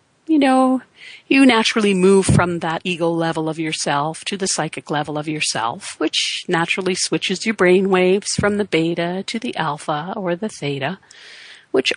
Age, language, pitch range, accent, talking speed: 50-69, English, 175-205 Hz, American, 165 wpm